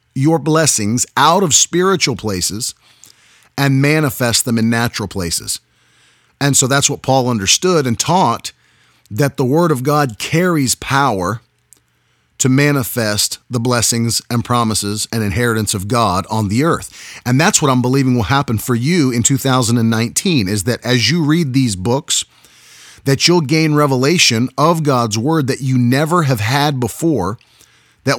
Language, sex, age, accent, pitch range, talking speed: English, male, 40-59, American, 110-145 Hz, 155 wpm